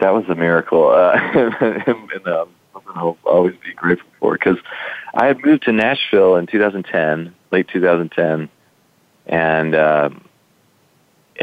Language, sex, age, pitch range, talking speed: English, male, 40-59, 75-90 Hz, 130 wpm